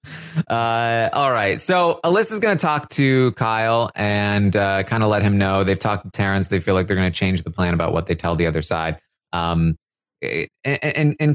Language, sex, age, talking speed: English, male, 20-39, 220 wpm